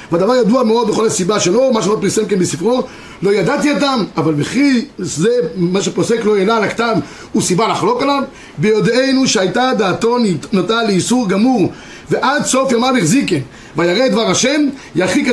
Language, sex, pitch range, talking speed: Hebrew, male, 195-250 Hz, 165 wpm